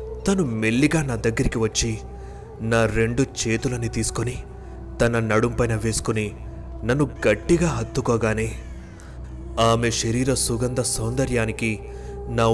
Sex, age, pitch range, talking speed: male, 30-49, 110-130 Hz, 95 wpm